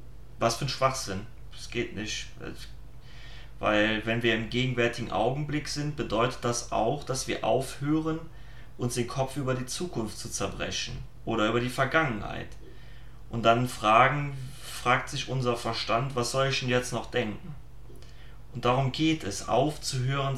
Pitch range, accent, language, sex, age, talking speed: 115-130 Hz, German, German, male, 30-49, 145 wpm